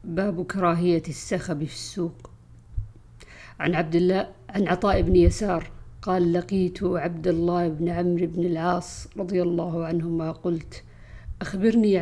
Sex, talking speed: female, 125 wpm